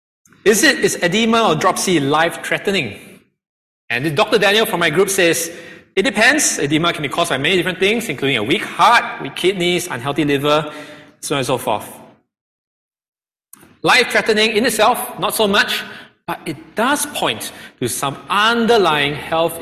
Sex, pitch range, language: male, 145-215 Hz, English